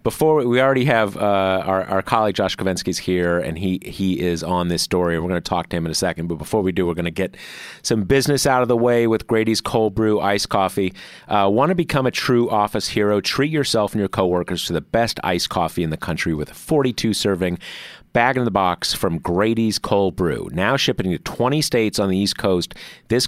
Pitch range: 90-120 Hz